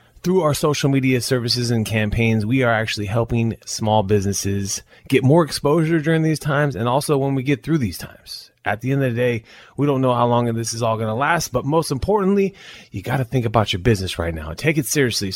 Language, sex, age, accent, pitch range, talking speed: English, male, 30-49, American, 105-140 Hz, 235 wpm